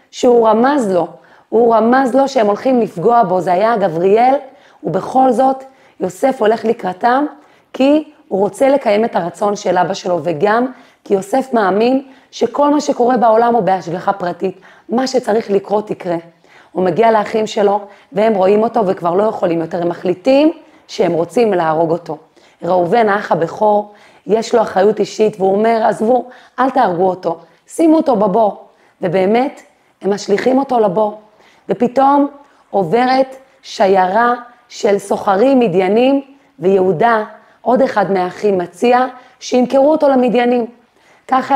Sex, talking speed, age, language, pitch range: female, 135 wpm, 30-49, Hebrew, 190-245 Hz